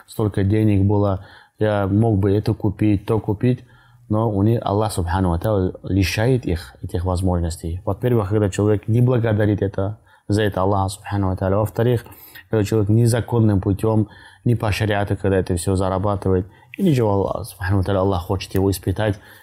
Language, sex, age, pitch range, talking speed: Russian, male, 20-39, 95-110 Hz, 150 wpm